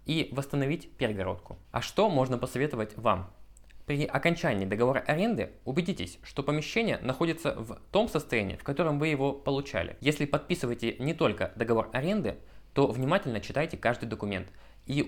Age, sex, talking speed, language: 20-39, male, 145 wpm, Russian